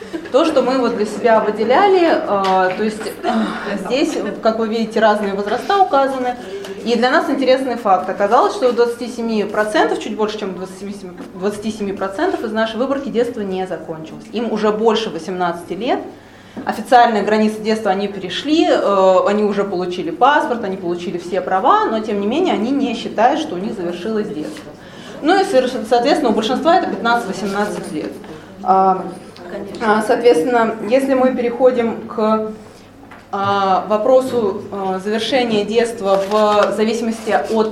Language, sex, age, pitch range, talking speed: Russian, female, 20-39, 200-250 Hz, 135 wpm